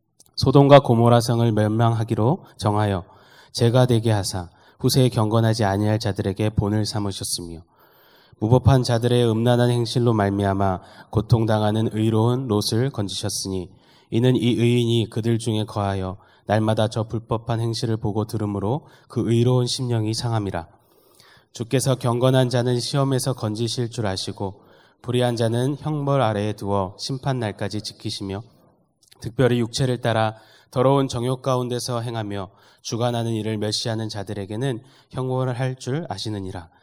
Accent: native